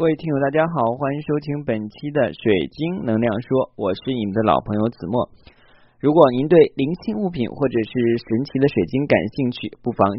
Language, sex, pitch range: Chinese, male, 105-130 Hz